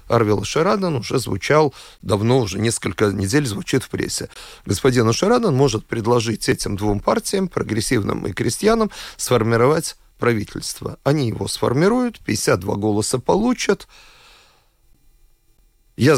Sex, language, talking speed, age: male, Russian, 110 wpm, 40-59